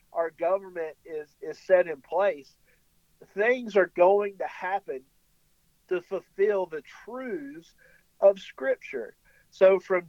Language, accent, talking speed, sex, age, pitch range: English, American, 120 wpm, male, 50-69, 165-225 Hz